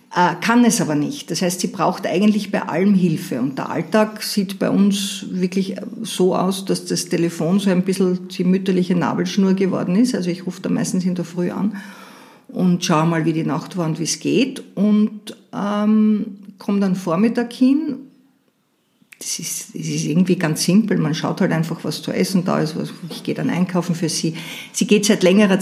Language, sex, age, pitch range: German, female, 50-69, 165-210 Hz